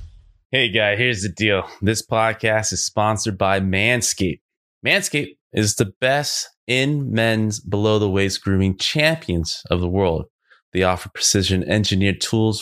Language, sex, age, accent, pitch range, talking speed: English, male, 20-39, American, 90-120 Hz, 145 wpm